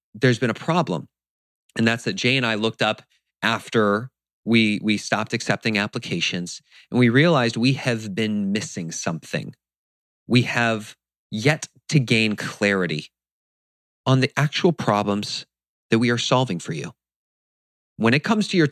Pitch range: 100-140 Hz